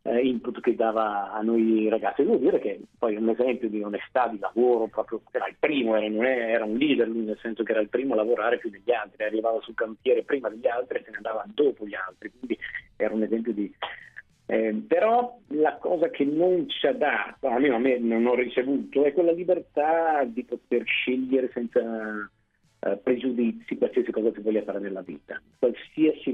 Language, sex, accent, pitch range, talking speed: Italian, male, native, 110-140 Hz, 195 wpm